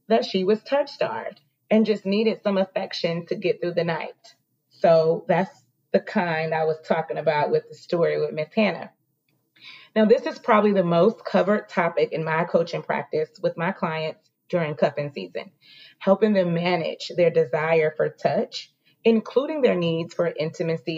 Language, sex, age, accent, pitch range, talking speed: English, female, 30-49, American, 170-220 Hz, 170 wpm